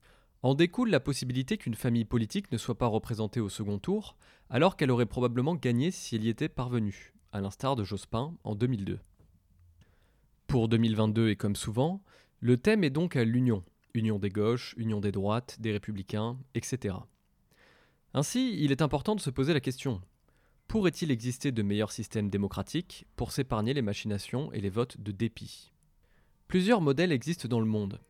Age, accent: 20-39, French